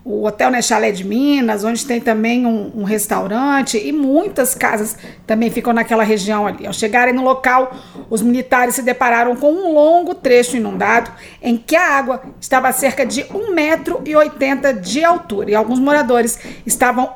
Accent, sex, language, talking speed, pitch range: Brazilian, female, Portuguese, 170 wpm, 230-280 Hz